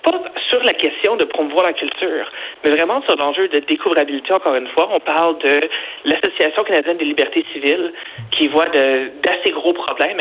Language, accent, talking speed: French, Canadian, 180 wpm